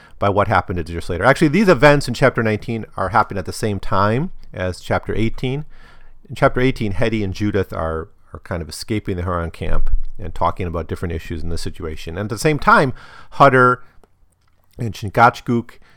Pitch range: 90-135 Hz